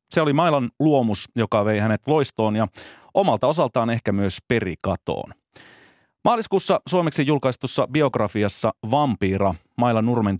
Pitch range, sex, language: 100-130 Hz, male, Finnish